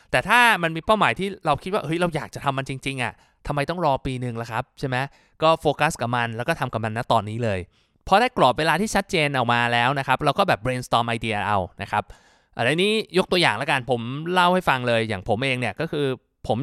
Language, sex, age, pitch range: Thai, male, 20-39, 125-165 Hz